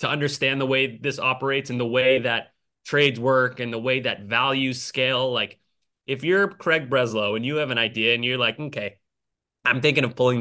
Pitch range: 115-140 Hz